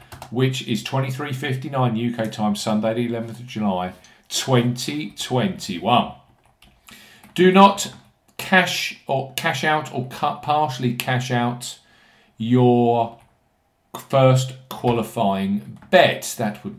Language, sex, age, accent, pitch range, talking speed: English, male, 50-69, British, 115-155 Hz, 100 wpm